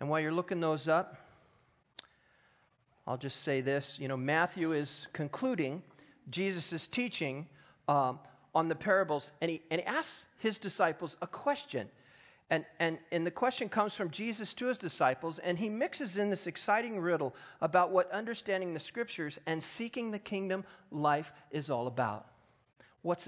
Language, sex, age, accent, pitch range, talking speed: English, male, 40-59, American, 145-220 Hz, 160 wpm